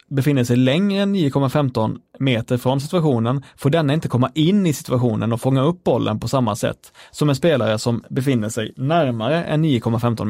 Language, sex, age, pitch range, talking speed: Swedish, male, 20-39, 120-155 Hz, 180 wpm